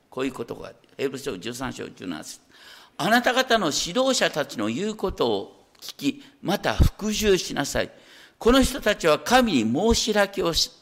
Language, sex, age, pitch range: Japanese, male, 50-69, 160-250 Hz